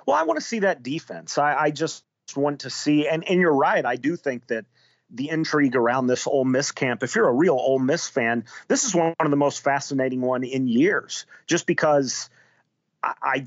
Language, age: English, 40-59